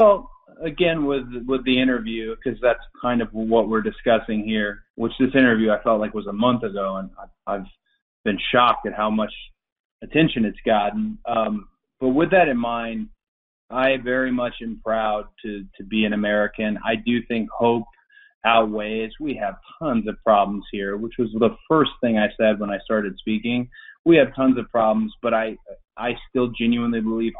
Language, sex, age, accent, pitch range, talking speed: English, male, 30-49, American, 110-140 Hz, 185 wpm